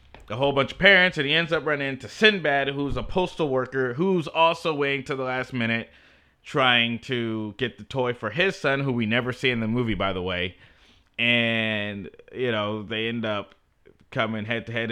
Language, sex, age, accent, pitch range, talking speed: English, male, 30-49, American, 110-150 Hz, 195 wpm